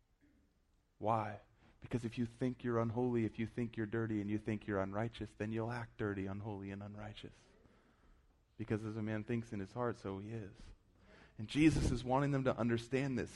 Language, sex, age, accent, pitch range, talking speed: English, male, 30-49, American, 95-115 Hz, 195 wpm